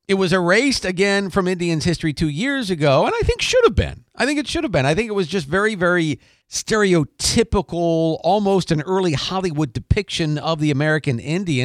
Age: 50-69